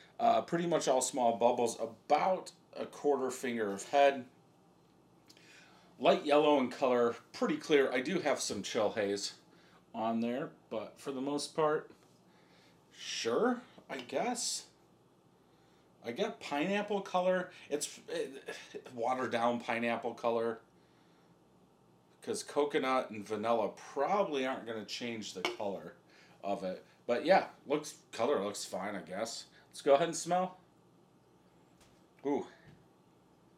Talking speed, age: 125 wpm, 40-59